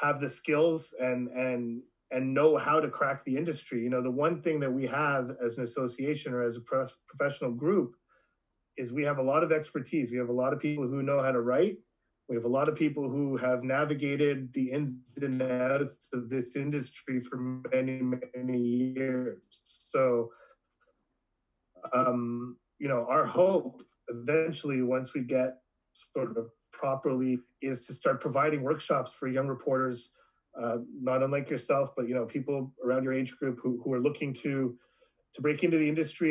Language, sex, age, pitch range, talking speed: English, male, 30-49, 125-150 Hz, 180 wpm